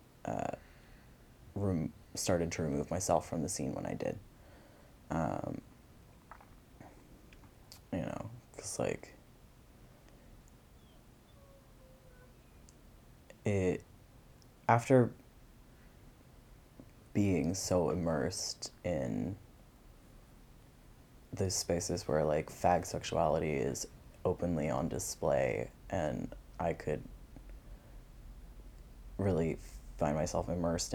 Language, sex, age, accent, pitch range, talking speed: English, male, 20-39, American, 85-120 Hz, 80 wpm